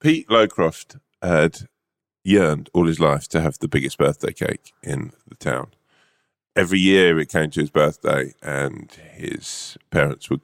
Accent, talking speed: British, 155 wpm